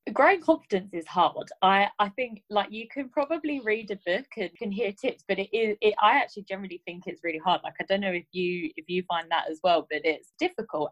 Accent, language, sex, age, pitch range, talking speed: British, English, female, 20-39, 170-210 Hz, 245 wpm